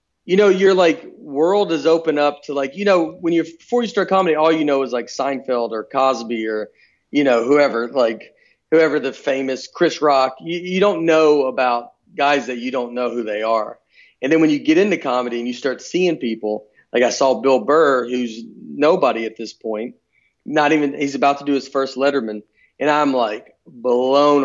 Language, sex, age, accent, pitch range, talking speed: English, male, 40-59, American, 125-165 Hz, 205 wpm